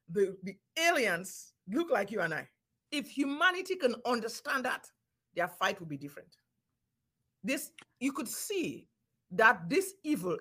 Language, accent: English, Nigerian